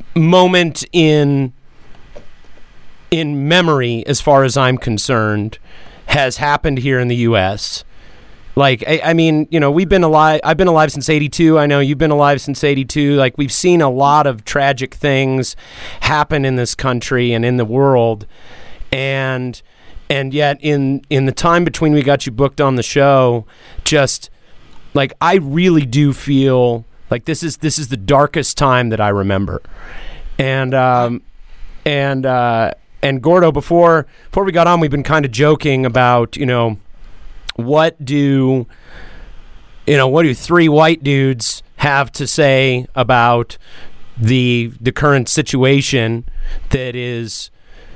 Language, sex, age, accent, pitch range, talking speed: English, male, 30-49, American, 120-150 Hz, 150 wpm